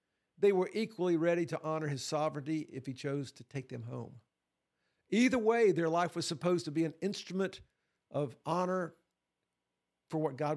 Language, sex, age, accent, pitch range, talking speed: English, male, 50-69, American, 140-185 Hz, 170 wpm